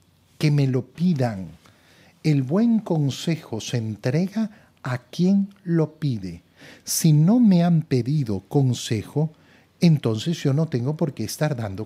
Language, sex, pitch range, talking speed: Spanish, male, 120-180 Hz, 135 wpm